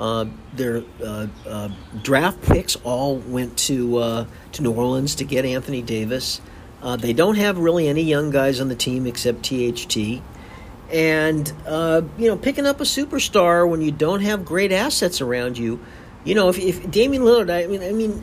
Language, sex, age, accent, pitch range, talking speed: English, male, 50-69, American, 125-180 Hz, 185 wpm